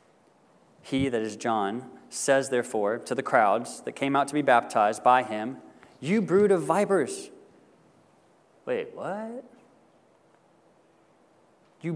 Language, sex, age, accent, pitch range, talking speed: English, male, 30-49, American, 130-180 Hz, 120 wpm